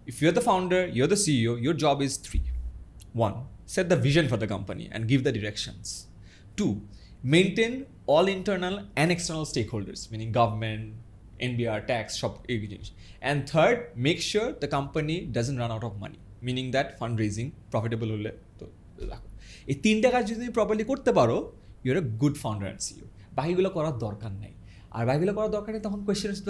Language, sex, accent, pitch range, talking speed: Bengali, male, native, 110-170 Hz, 170 wpm